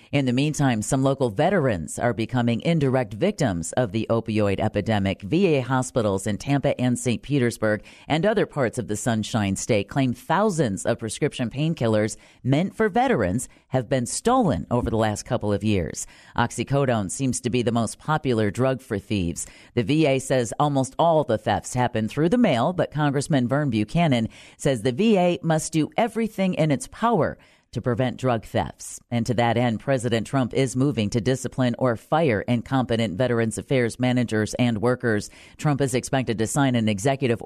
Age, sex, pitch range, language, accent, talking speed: 40-59, female, 115-150 Hz, English, American, 175 wpm